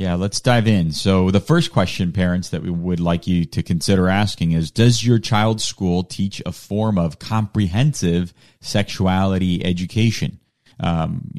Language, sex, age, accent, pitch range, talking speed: English, male, 30-49, American, 85-105 Hz, 160 wpm